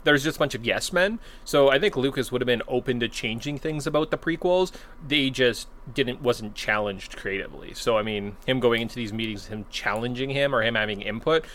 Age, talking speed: 20-39, 220 wpm